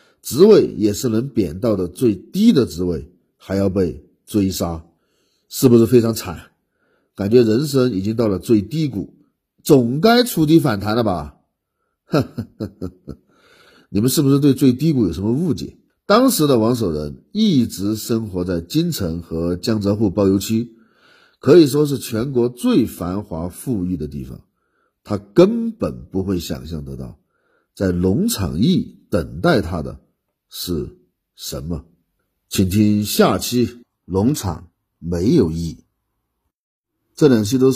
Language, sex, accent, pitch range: Chinese, male, native, 90-120 Hz